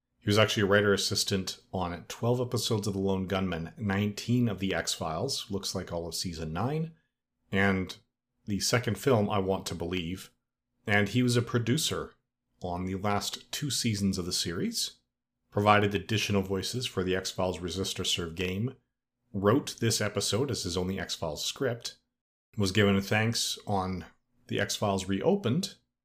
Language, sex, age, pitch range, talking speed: English, male, 40-59, 100-120 Hz, 160 wpm